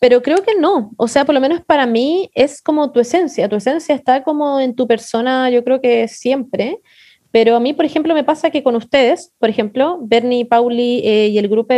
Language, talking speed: Spanish, 225 wpm